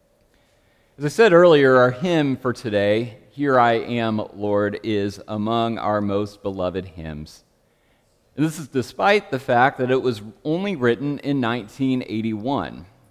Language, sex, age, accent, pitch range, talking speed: English, male, 40-59, American, 100-130 Hz, 135 wpm